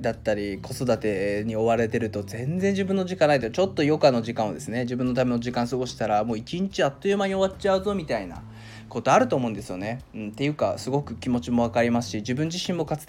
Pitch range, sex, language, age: 120-195 Hz, male, Japanese, 20-39